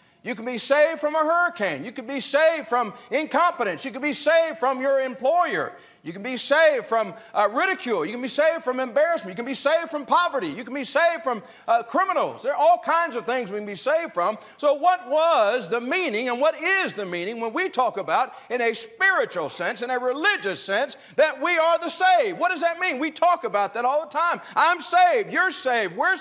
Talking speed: 230 wpm